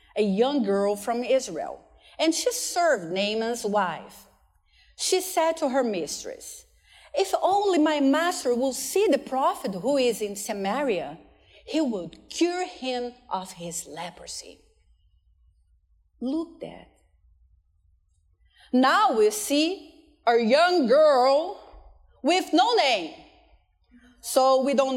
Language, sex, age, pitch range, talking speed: English, female, 40-59, 195-310 Hz, 115 wpm